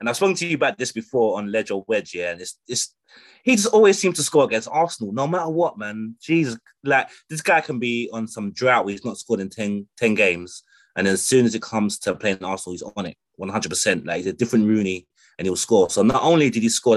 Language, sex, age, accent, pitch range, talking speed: English, male, 20-39, British, 95-140 Hz, 255 wpm